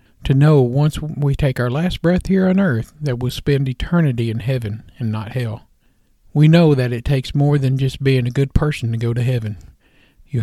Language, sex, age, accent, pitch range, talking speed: English, male, 50-69, American, 120-150 Hz, 215 wpm